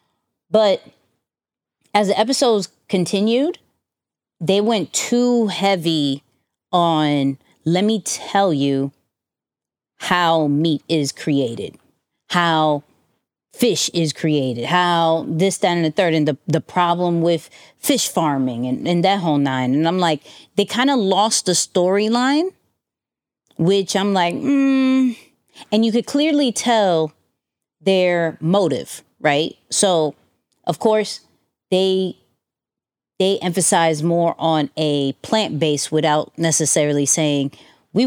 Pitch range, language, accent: 160-220 Hz, English, American